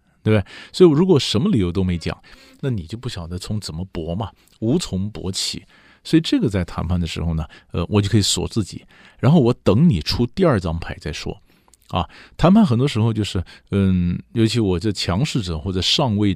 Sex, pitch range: male, 85-115 Hz